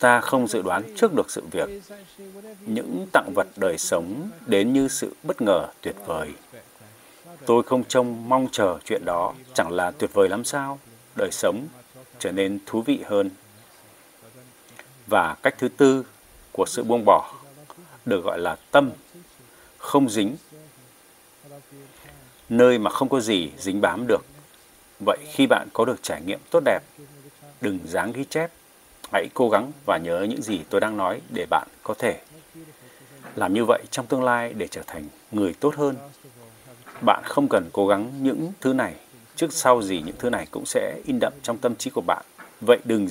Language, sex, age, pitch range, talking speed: Vietnamese, male, 60-79, 120-155 Hz, 175 wpm